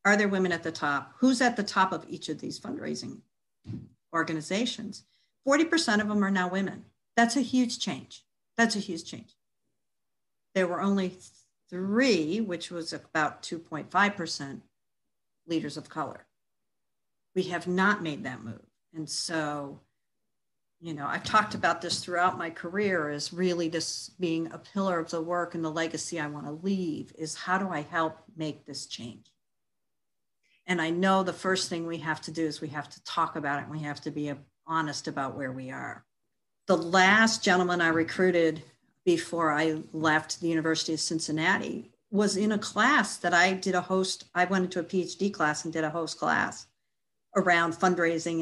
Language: English